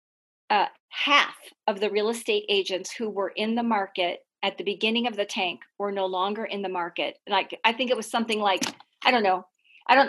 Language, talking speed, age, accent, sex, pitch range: English, 215 wpm, 40-59, American, female, 195-245 Hz